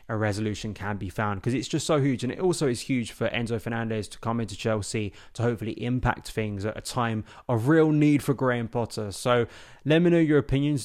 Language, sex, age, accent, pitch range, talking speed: English, male, 20-39, British, 105-120 Hz, 225 wpm